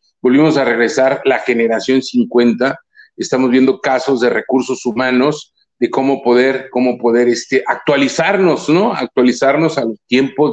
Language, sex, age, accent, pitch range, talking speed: Spanish, male, 40-59, Mexican, 130-165 Hz, 135 wpm